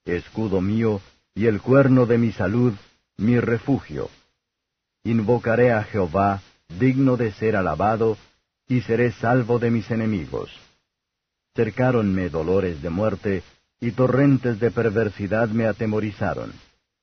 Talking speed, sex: 115 wpm, male